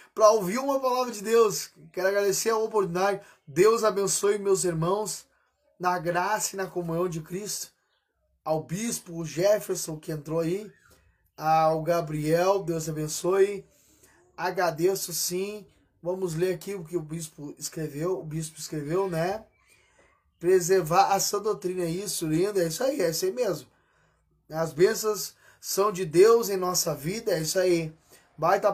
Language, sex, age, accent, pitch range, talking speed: Portuguese, male, 20-39, Brazilian, 160-195 Hz, 150 wpm